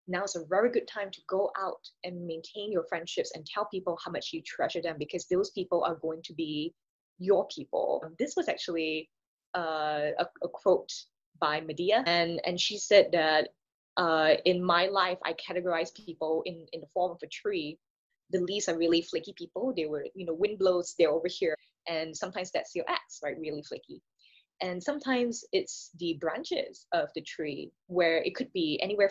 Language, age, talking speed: English, 20-39, 195 wpm